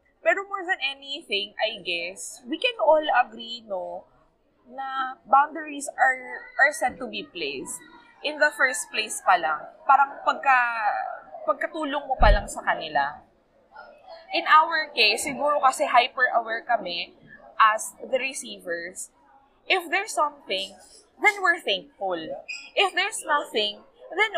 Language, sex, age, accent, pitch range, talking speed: Filipino, female, 20-39, native, 235-330 Hz, 120 wpm